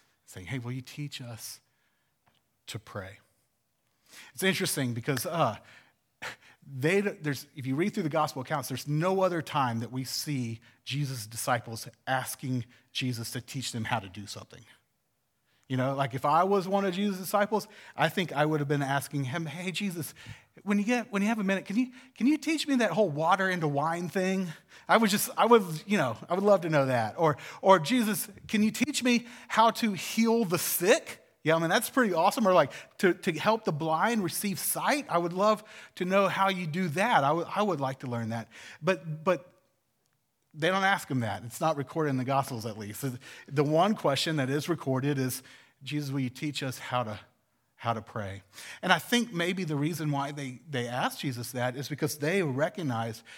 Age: 40-59